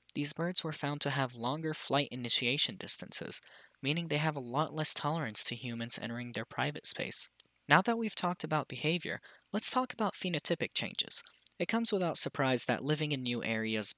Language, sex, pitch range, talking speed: English, male, 120-165 Hz, 185 wpm